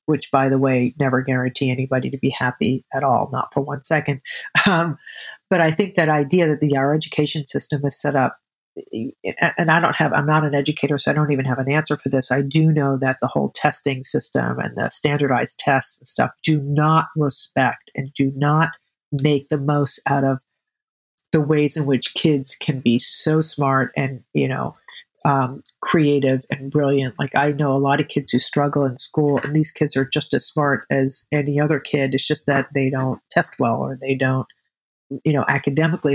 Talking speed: 205 wpm